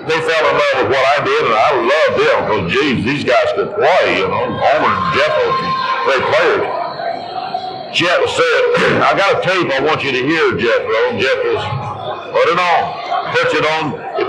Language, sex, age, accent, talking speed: English, male, 60-79, American, 195 wpm